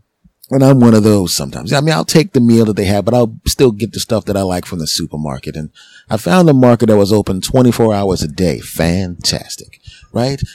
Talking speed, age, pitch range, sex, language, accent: 235 wpm, 30-49, 95-120 Hz, male, English, American